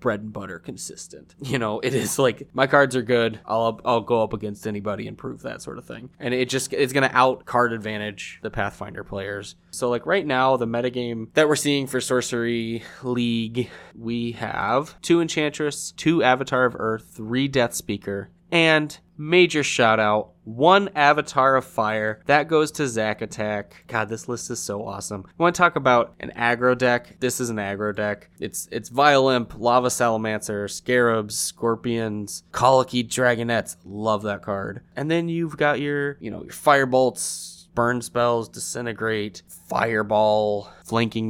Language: English